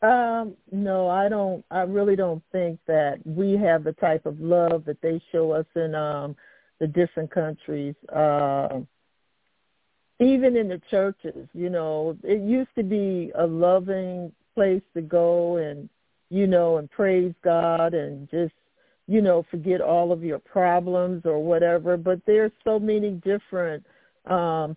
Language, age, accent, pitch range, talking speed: English, 50-69, American, 165-205 Hz, 155 wpm